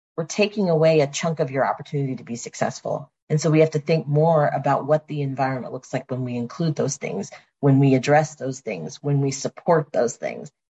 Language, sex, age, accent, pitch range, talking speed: English, female, 40-59, American, 135-160 Hz, 220 wpm